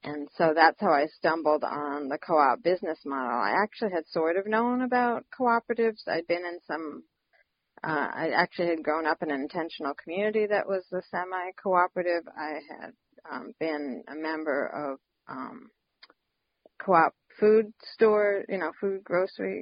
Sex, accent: female, American